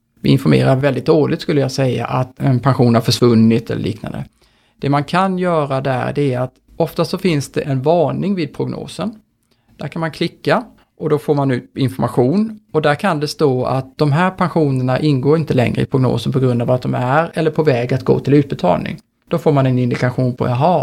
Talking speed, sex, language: 215 wpm, male, Swedish